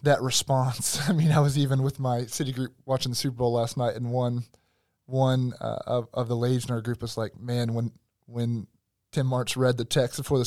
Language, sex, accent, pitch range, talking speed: English, male, American, 110-135 Hz, 230 wpm